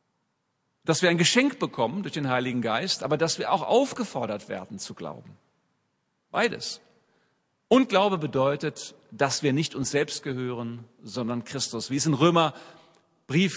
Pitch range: 145-195 Hz